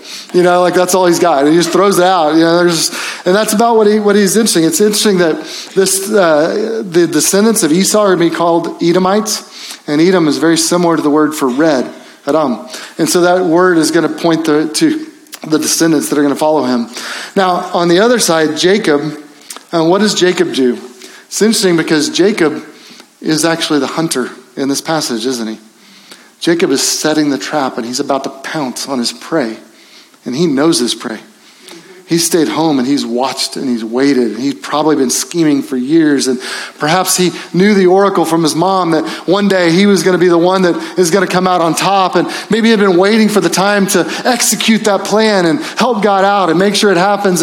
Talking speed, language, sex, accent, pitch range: 220 wpm, English, male, American, 165-205 Hz